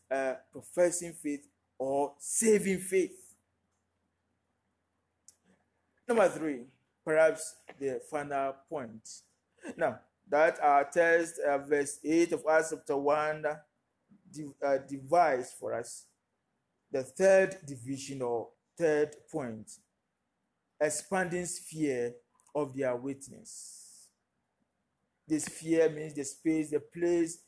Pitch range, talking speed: 135-175 Hz, 105 wpm